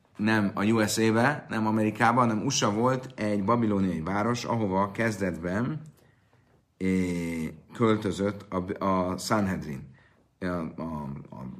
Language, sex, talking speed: Hungarian, male, 90 wpm